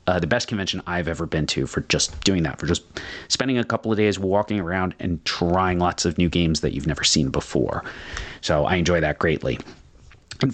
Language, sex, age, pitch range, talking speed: English, male, 30-49, 85-115 Hz, 215 wpm